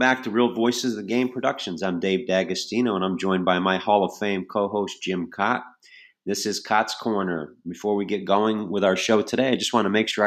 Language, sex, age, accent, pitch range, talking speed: English, male, 40-59, American, 95-115 Hz, 240 wpm